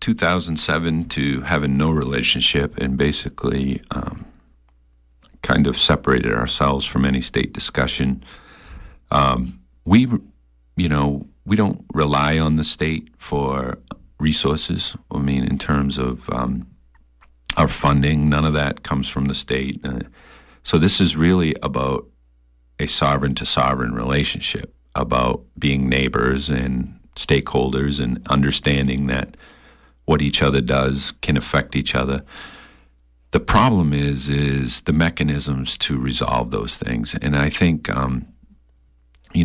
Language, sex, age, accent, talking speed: English, male, 50-69, American, 130 wpm